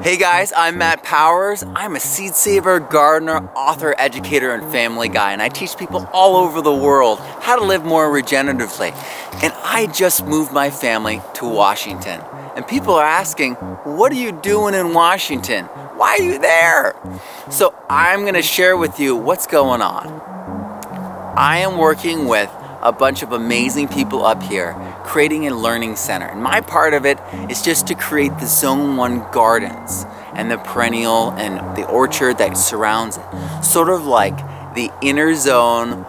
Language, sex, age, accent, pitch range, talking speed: English, male, 30-49, American, 120-170 Hz, 170 wpm